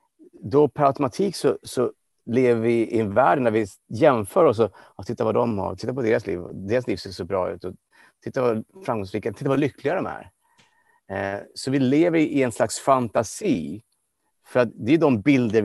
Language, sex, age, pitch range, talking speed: English, male, 30-49, 105-130 Hz, 200 wpm